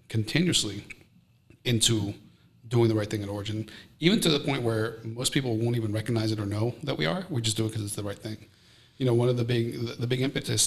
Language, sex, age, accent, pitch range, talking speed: English, male, 40-59, American, 110-120 Hz, 235 wpm